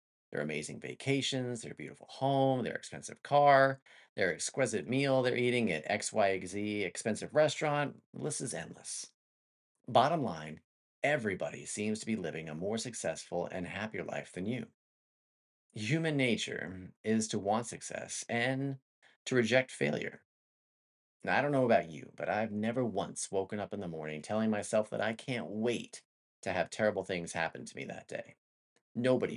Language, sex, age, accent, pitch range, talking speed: English, male, 40-59, American, 90-130 Hz, 155 wpm